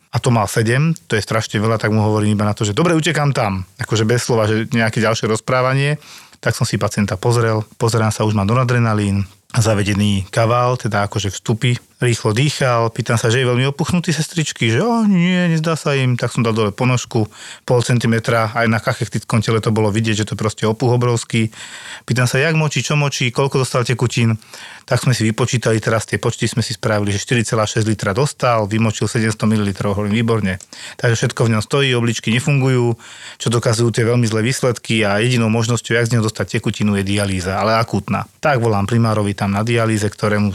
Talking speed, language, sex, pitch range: 200 wpm, Slovak, male, 110-135 Hz